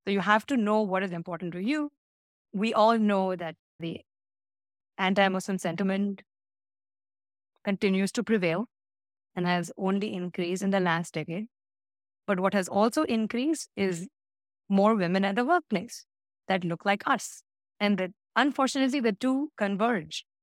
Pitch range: 165-220 Hz